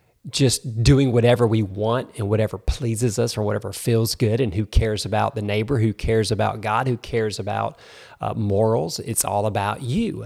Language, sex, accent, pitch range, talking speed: English, male, American, 110-130 Hz, 185 wpm